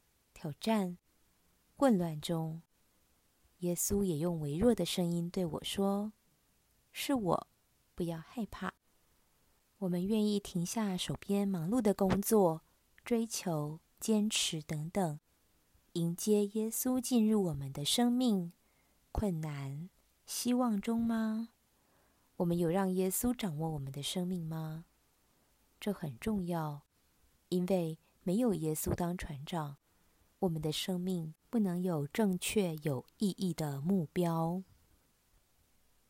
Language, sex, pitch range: Chinese, female, 160-210 Hz